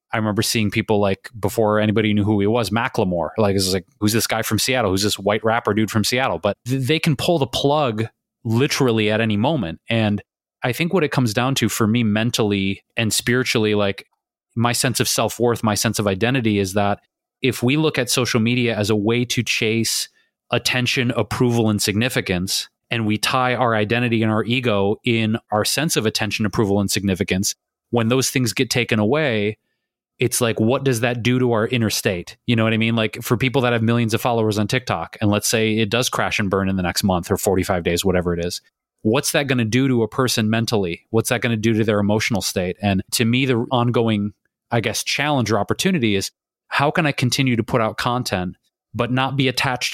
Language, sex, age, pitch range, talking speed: English, male, 30-49, 105-125 Hz, 215 wpm